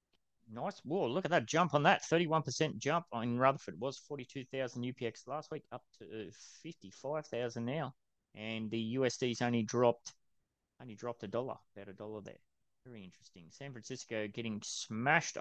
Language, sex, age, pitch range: English, male, 30-49, 105-125 Hz